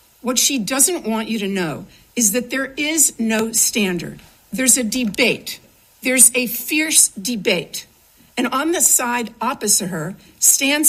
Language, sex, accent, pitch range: English, female, American, 205-260 Hz